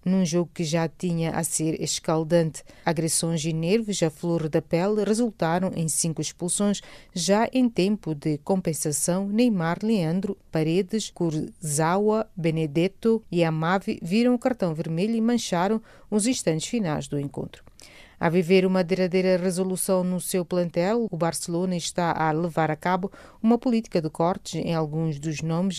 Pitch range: 160-195 Hz